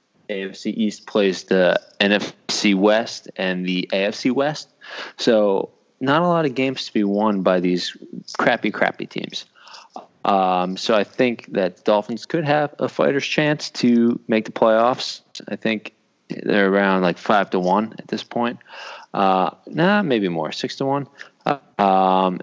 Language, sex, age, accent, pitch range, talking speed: English, male, 20-39, American, 100-125 Hz, 155 wpm